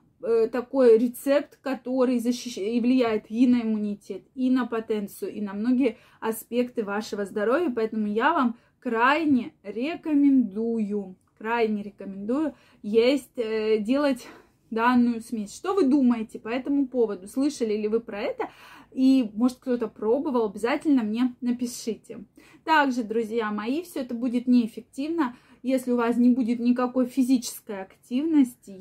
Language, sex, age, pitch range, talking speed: Russian, female, 20-39, 220-260 Hz, 125 wpm